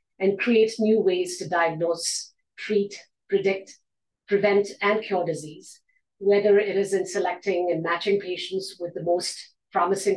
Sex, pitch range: female, 170-210 Hz